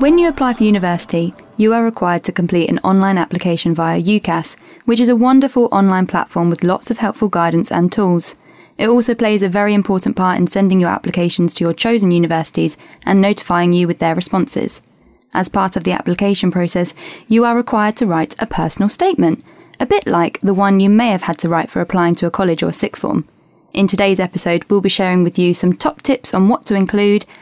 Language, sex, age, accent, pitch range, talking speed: English, female, 10-29, British, 175-225 Hz, 210 wpm